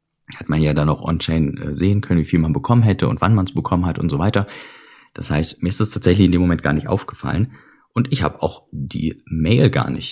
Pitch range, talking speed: 90-125 Hz, 250 wpm